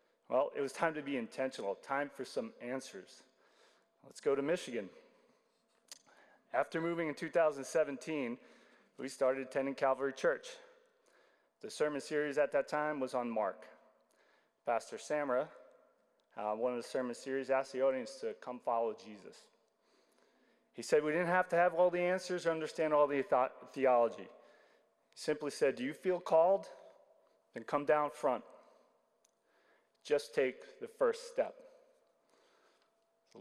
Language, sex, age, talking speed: English, male, 30-49, 145 wpm